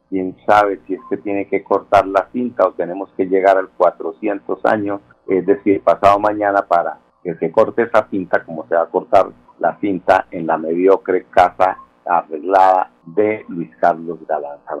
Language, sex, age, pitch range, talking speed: Spanish, male, 50-69, 85-105 Hz, 175 wpm